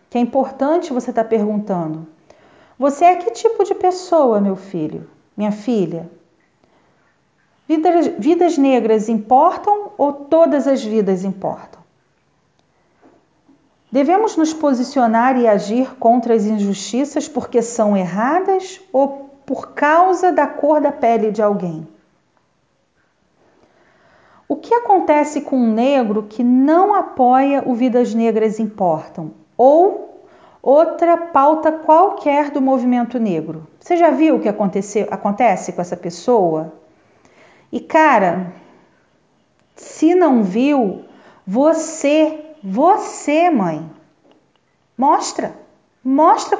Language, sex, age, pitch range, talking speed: Portuguese, female, 40-59, 215-320 Hz, 110 wpm